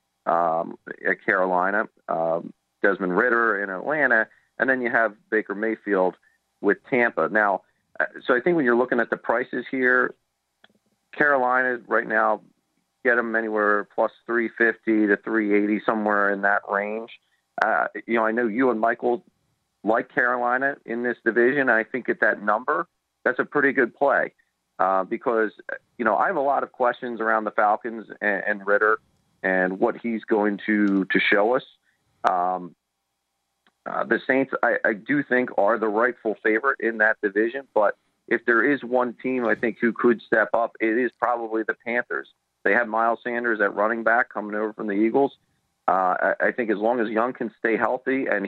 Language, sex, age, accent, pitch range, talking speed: English, male, 40-59, American, 105-120 Hz, 180 wpm